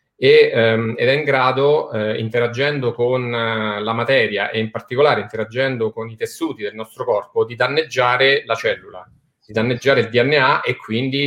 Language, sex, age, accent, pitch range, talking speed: Italian, male, 30-49, native, 115-150 Hz, 150 wpm